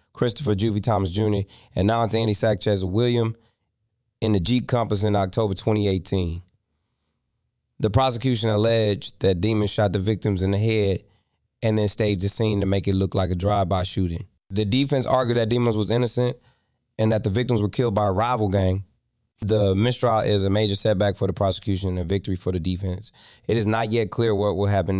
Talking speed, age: 190 wpm, 20-39